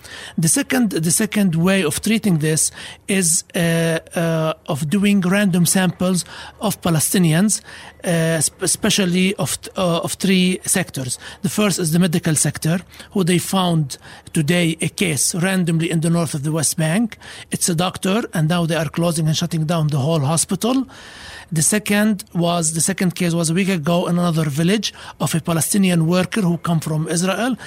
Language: English